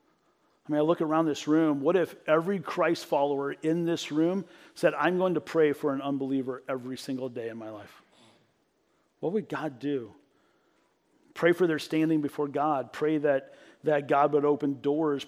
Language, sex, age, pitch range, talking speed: English, male, 40-59, 140-170 Hz, 180 wpm